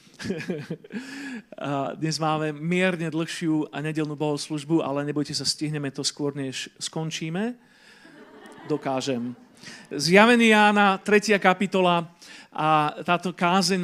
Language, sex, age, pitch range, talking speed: Slovak, male, 40-59, 150-185 Hz, 100 wpm